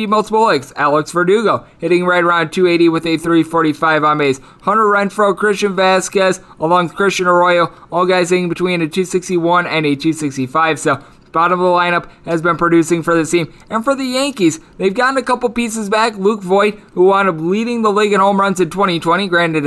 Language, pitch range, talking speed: English, 150-180 Hz, 200 wpm